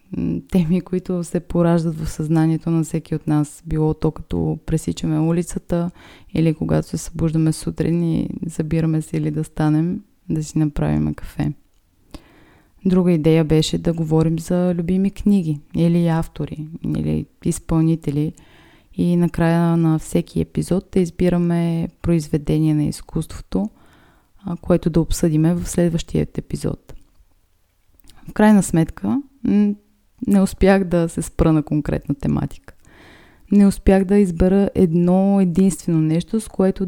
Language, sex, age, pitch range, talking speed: Bulgarian, female, 20-39, 155-185 Hz, 125 wpm